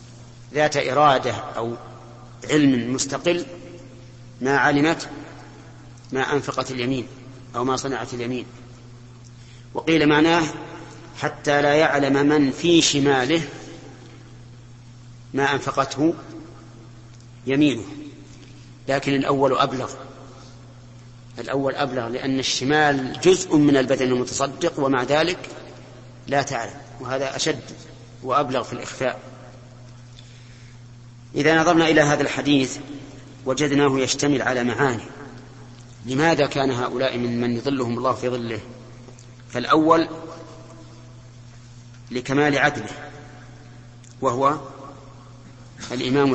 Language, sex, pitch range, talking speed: Arabic, male, 120-140 Hz, 90 wpm